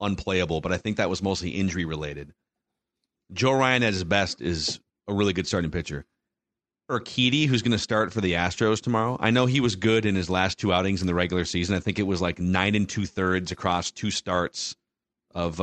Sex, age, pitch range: male, 30-49, 95-120 Hz